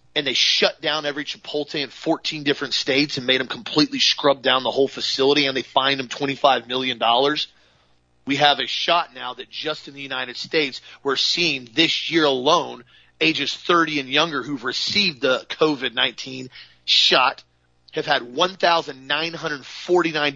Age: 30-49